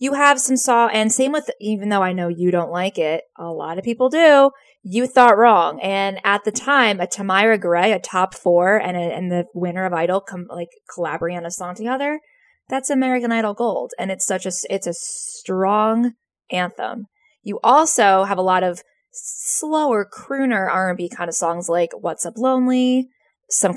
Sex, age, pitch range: female, 20-39, 185-260 Hz